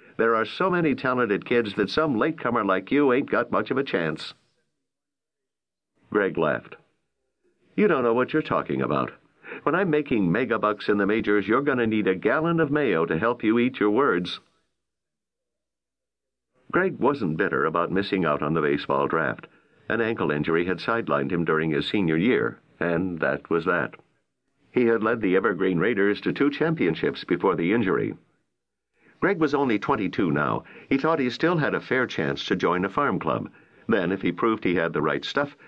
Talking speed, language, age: 185 wpm, English, 60-79